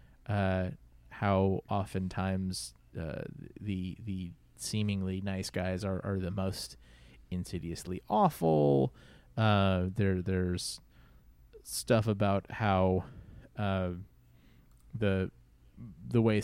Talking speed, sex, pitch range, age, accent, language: 90 wpm, male, 90-110 Hz, 30-49, American, English